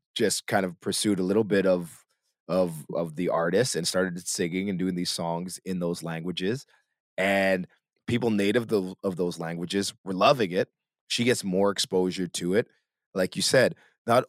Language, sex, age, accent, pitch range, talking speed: English, male, 20-39, American, 95-115 Hz, 170 wpm